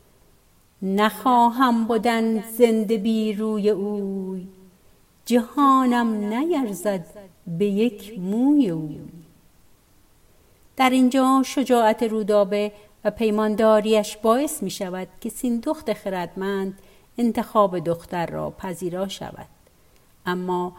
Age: 50-69